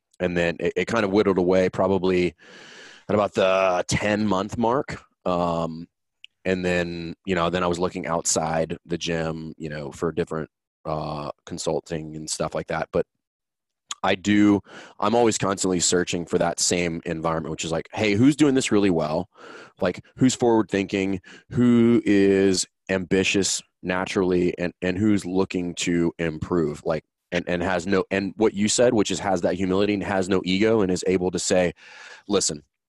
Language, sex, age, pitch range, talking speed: English, male, 20-39, 85-100 Hz, 175 wpm